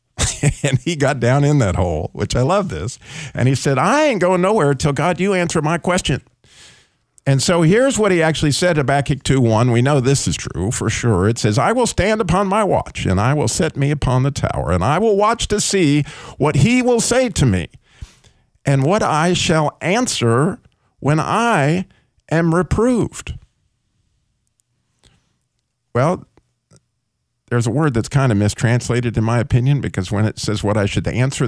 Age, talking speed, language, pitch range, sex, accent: 50-69, 185 wpm, English, 115-155 Hz, male, American